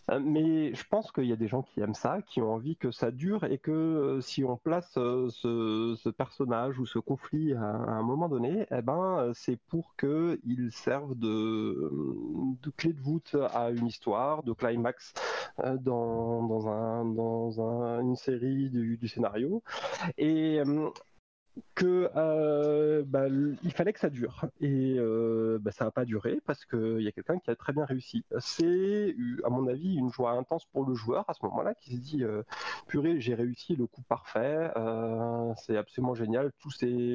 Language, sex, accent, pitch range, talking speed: French, male, French, 115-150 Hz, 185 wpm